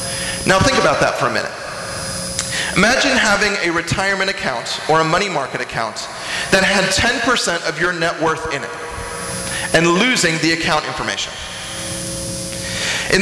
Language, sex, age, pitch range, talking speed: English, male, 40-59, 165-215 Hz, 145 wpm